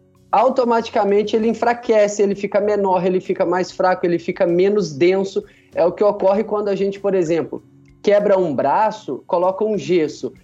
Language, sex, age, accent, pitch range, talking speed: Portuguese, male, 20-39, Brazilian, 170-215 Hz, 165 wpm